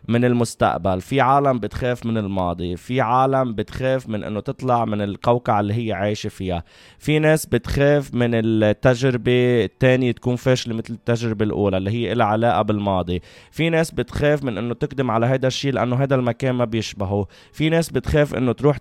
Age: 20-39